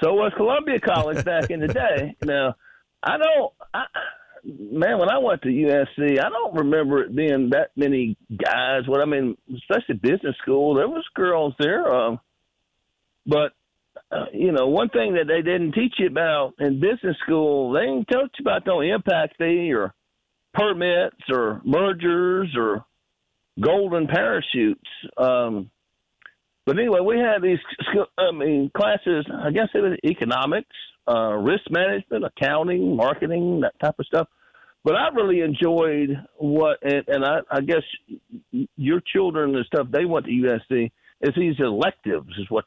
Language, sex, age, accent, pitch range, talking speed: English, male, 50-69, American, 140-185 Hz, 160 wpm